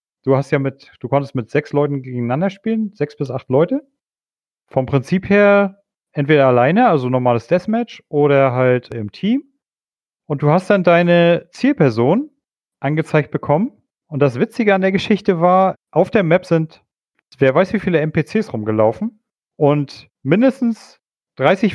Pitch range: 135-180 Hz